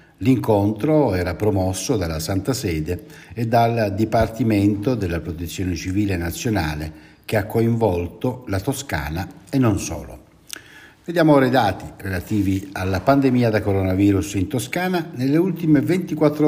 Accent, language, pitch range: native, Italian, 95-130 Hz